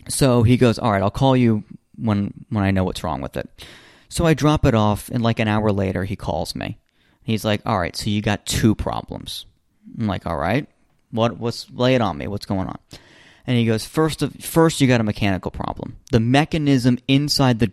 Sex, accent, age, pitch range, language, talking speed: male, American, 30-49, 100-135 Hz, English, 225 wpm